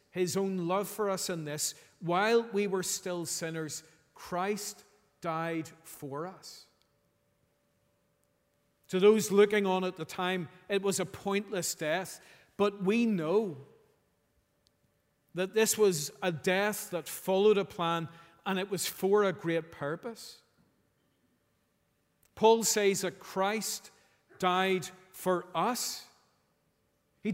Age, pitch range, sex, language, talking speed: 40-59, 170-210 Hz, male, English, 120 wpm